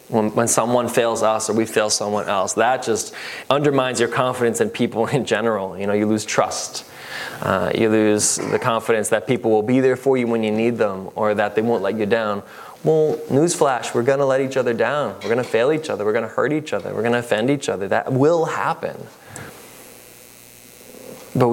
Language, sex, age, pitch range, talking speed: English, male, 20-39, 120-150 Hz, 215 wpm